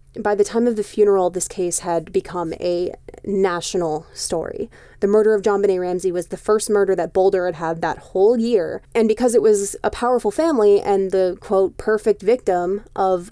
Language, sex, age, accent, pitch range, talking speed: English, female, 20-39, American, 185-220 Hz, 195 wpm